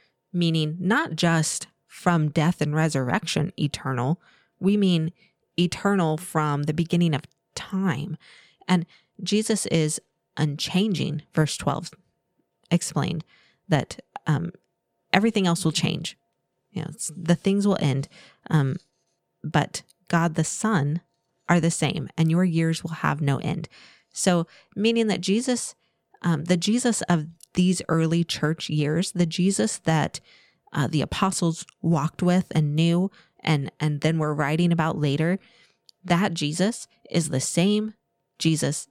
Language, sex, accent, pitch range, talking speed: English, female, American, 155-185 Hz, 130 wpm